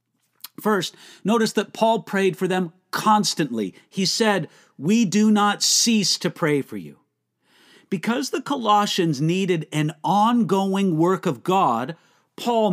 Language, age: English, 50-69